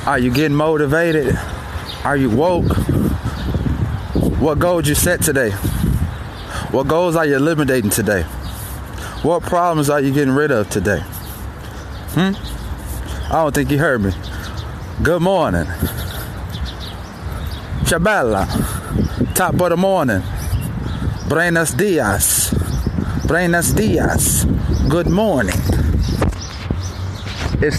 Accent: American